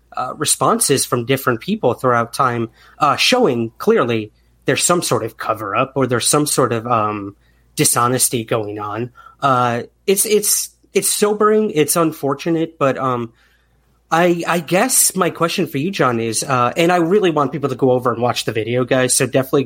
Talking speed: 180 wpm